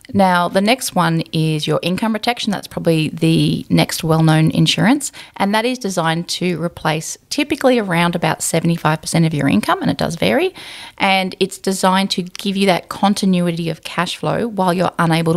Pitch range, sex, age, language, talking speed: 165-210 Hz, female, 30-49, English, 180 wpm